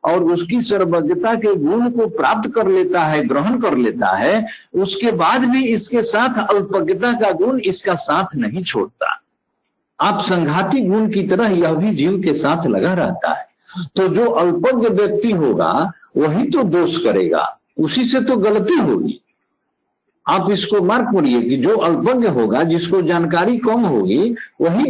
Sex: male